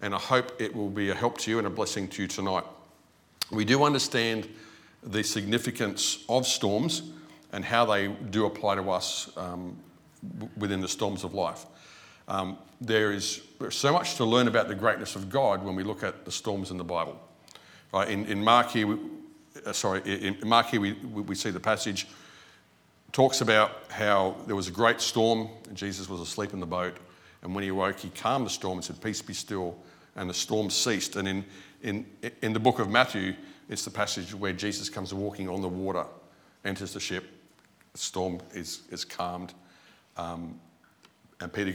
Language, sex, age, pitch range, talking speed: English, male, 50-69, 95-115 Hz, 180 wpm